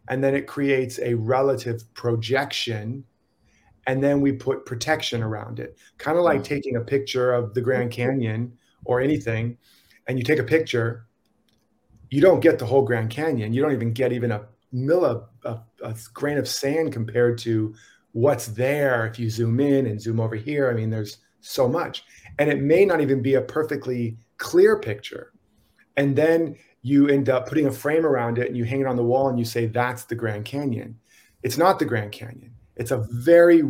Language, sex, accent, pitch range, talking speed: English, male, American, 115-140 Hz, 195 wpm